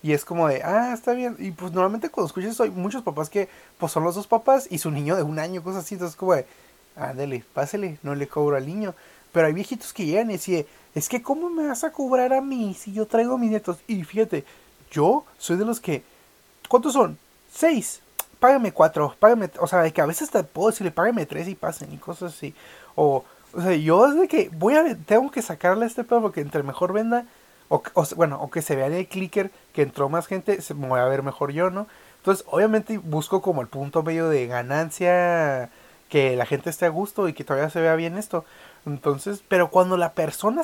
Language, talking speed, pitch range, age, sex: Spanish, 235 wpm, 150-210 Hz, 30-49, male